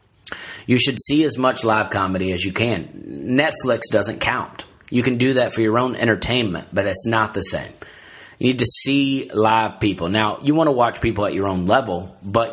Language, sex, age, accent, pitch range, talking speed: English, male, 30-49, American, 105-125 Hz, 205 wpm